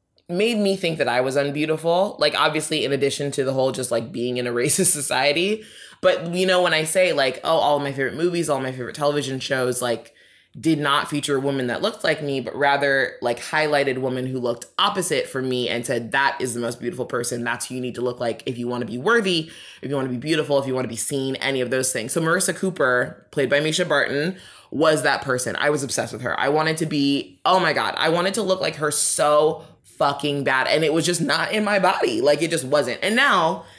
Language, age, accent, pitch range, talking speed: English, 20-39, American, 130-170 Hz, 250 wpm